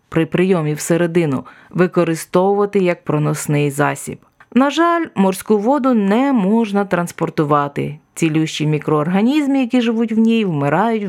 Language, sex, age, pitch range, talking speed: Ukrainian, female, 30-49, 160-210 Hz, 115 wpm